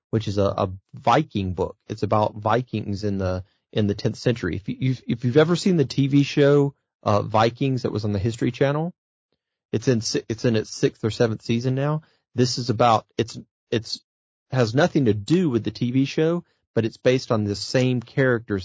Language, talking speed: English, 200 wpm